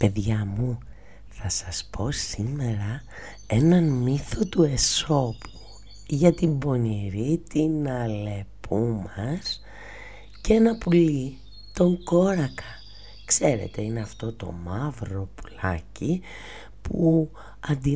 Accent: native